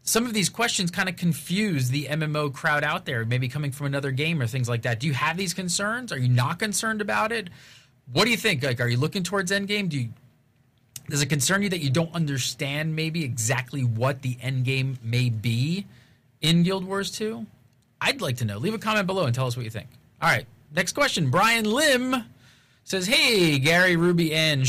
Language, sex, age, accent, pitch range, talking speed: English, male, 30-49, American, 125-175 Hz, 210 wpm